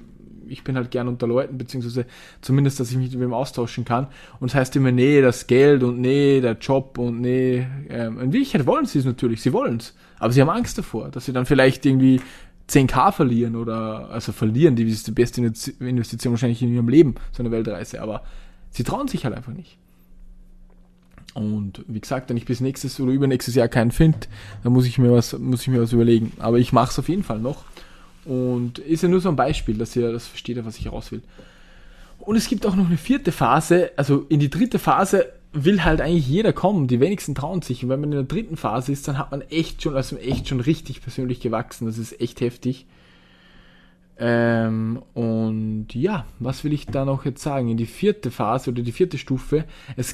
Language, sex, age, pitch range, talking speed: German, male, 20-39, 120-145 Hz, 220 wpm